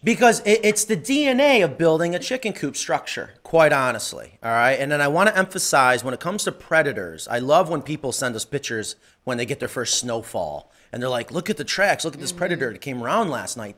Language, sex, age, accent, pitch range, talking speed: English, male, 30-49, American, 125-170 Hz, 235 wpm